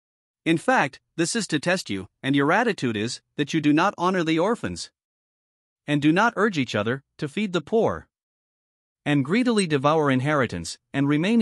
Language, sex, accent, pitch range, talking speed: English, male, American, 130-180 Hz, 180 wpm